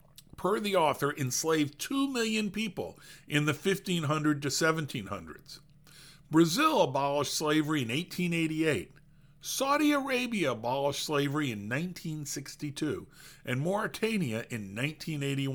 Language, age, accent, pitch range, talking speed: English, 50-69, American, 140-180 Hz, 130 wpm